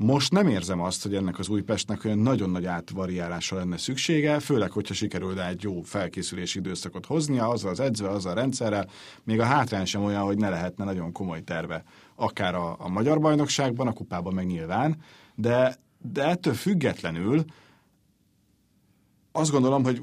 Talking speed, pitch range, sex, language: 165 wpm, 95-130 Hz, male, Hungarian